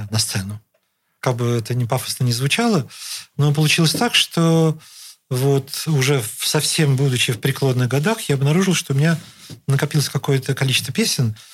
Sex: male